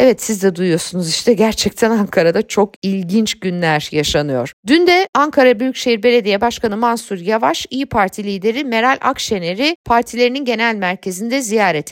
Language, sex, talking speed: Turkish, female, 140 wpm